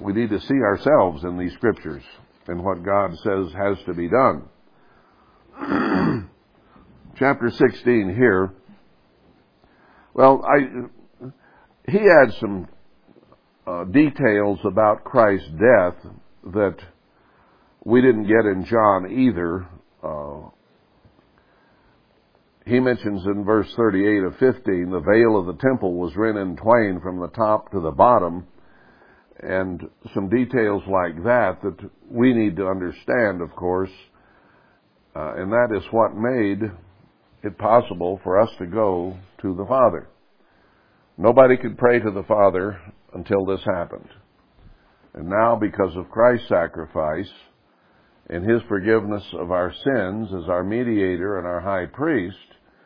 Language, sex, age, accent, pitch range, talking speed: English, male, 60-79, American, 90-115 Hz, 130 wpm